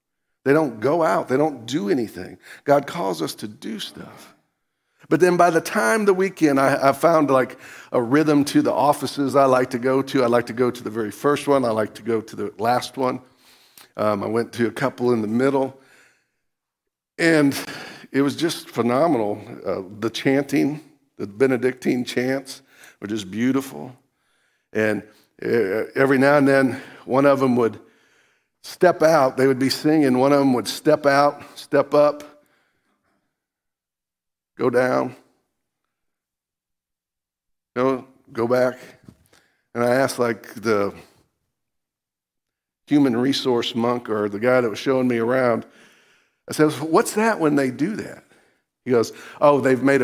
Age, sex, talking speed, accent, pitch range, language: 50-69, male, 155 wpm, American, 115-140 Hz, English